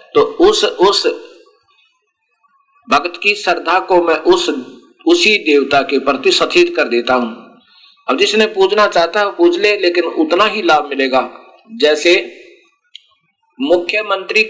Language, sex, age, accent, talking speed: Hindi, male, 50-69, native, 130 wpm